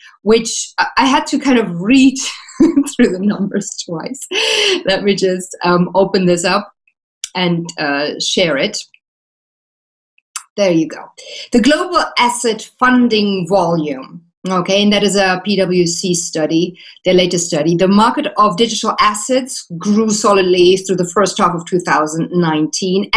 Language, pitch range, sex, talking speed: English, 185-250 Hz, female, 135 wpm